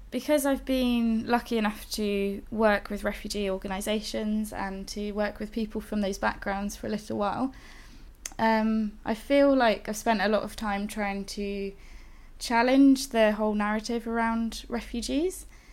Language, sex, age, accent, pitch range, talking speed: English, female, 20-39, British, 200-230 Hz, 155 wpm